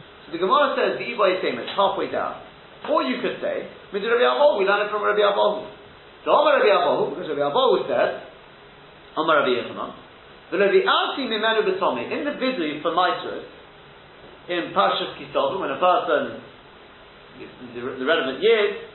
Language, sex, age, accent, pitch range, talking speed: English, male, 40-59, British, 190-300 Hz, 145 wpm